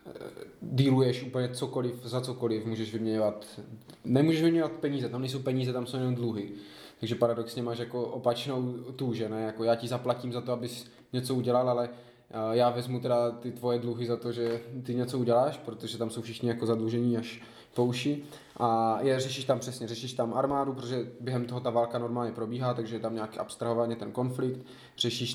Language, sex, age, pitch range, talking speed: Czech, male, 20-39, 115-130 Hz, 180 wpm